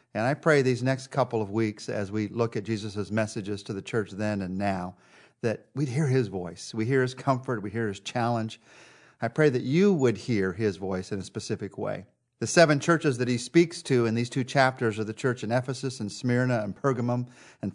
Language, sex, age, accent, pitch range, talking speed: English, male, 50-69, American, 115-140 Hz, 225 wpm